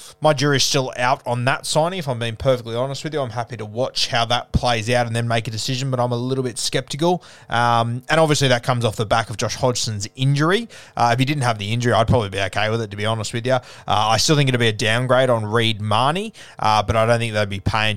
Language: English